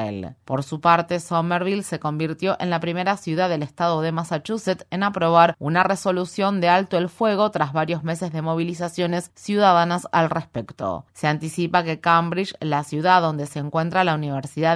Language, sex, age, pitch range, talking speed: Spanish, female, 30-49, 160-180 Hz, 165 wpm